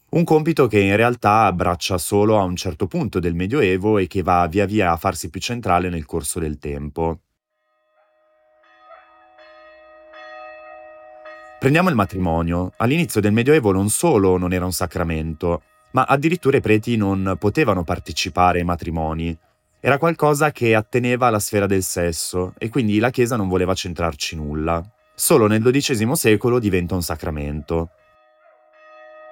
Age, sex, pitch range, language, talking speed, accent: 30-49, male, 90-125 Hz, Italian, 145 wpm, native